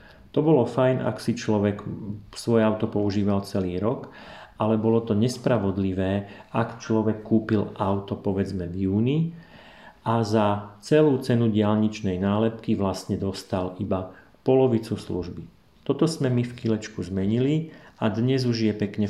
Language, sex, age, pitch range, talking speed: Slovak, male, 40-59, 100-125 Hz, 140 wpm